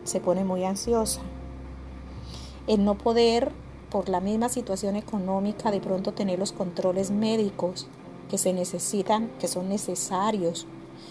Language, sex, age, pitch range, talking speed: Spanish, female, 30-49, 175-220 Hz, 130 wpm